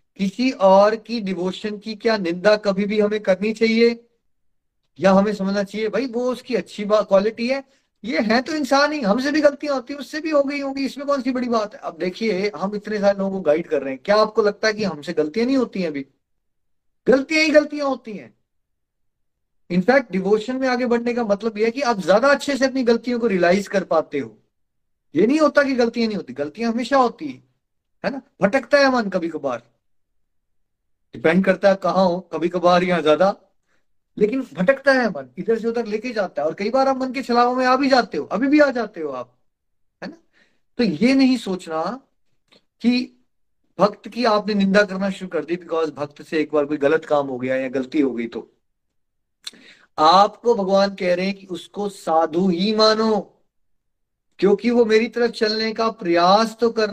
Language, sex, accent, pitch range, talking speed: Hindi, male, native, 180-240 Hz, 205 wpm